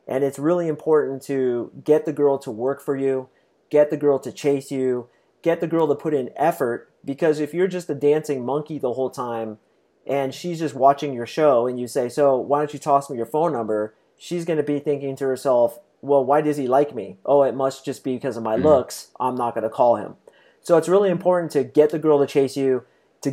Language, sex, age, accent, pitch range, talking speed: English, male, 30-49, American, 125-150 Hz, 240 wpm